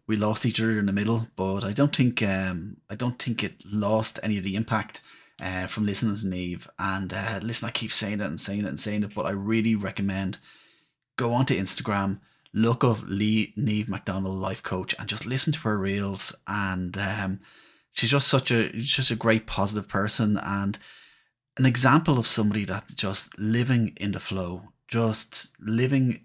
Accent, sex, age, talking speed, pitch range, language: Irish, male, 30-49, 185 wpm, 100-120 Hz, English